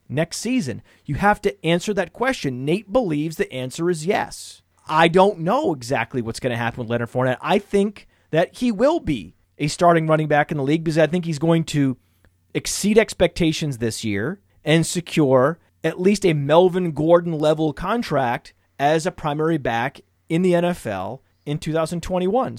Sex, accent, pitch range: male, American, 130-180 Hz